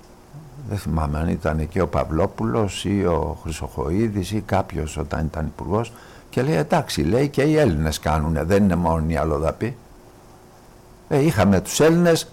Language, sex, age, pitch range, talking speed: Greek, male, 60-79, 90-125 Hz, 155 wpm